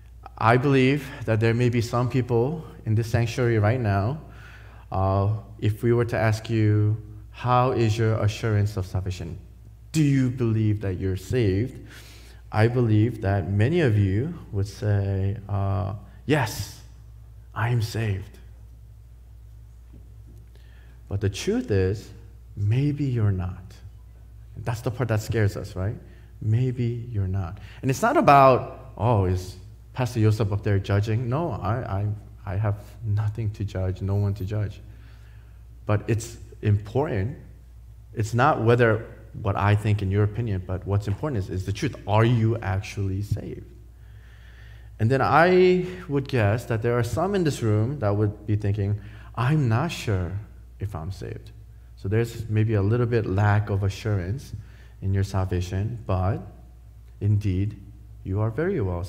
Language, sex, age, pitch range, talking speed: English, male, 20-39, 100-115 Hz, 150 wpm